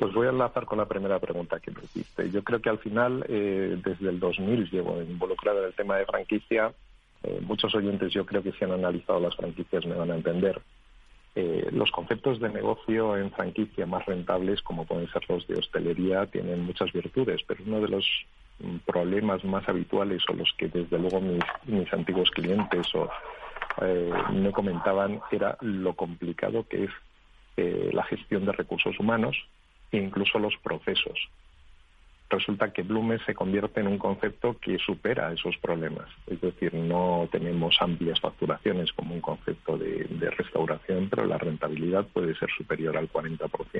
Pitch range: 85-105 Hz